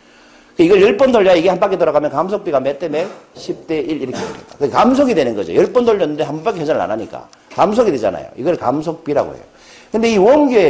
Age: 40-59